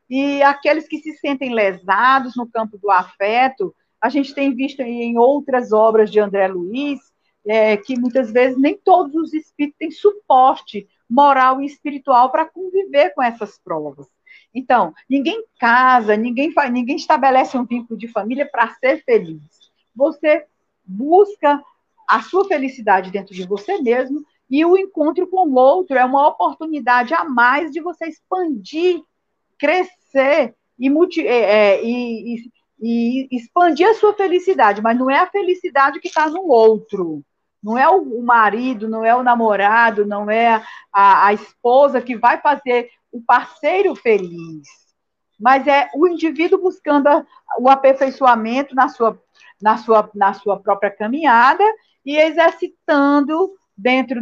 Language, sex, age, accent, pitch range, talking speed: Portuguese, female, 50-69, Brazilian, 225-310 Hz, 135 wpm